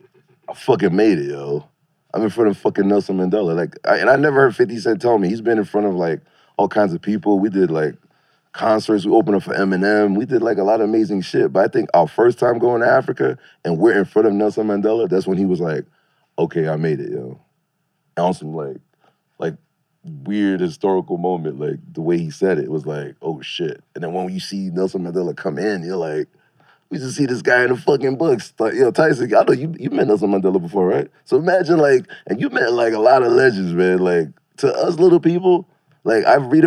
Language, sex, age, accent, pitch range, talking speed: English, male, 30-49, American, 100-160 Hz, 235 wpm